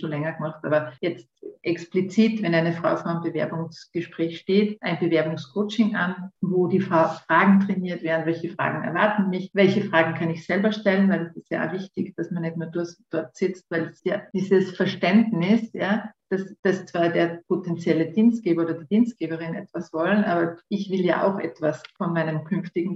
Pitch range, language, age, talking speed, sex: 165-195 Hz, German, 50-69, 180 wpm, female